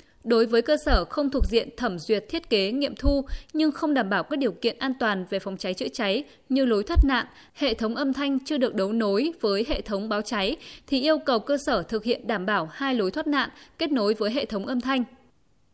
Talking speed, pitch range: 245 wpm, 215-280 Hz